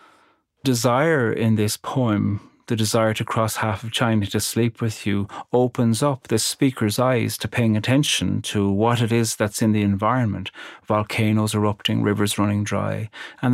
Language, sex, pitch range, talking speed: English, male, 110-125 Hz, 165 wpm